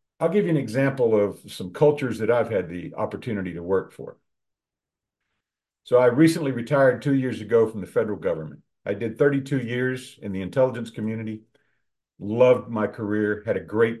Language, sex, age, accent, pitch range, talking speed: English, male, 50-69, American, 110-155 Hz, 175 wpm